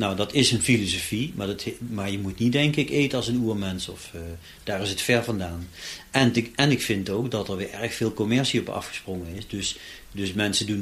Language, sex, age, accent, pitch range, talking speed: Dutch, male, 40-59, Dutch, 95-120 Hz, 225 wpm